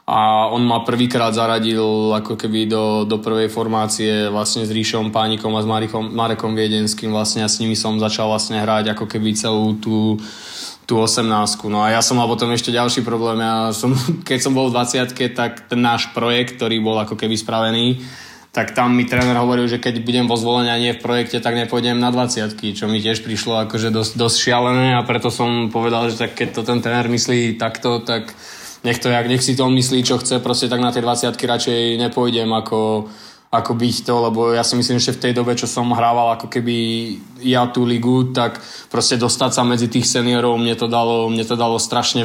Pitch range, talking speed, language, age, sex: 110-120 Hz, 205 wpm, Slovak, 20-39, male